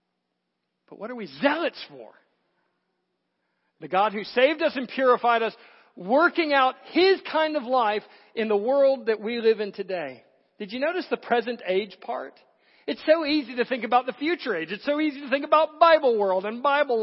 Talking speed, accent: 190 wpm, American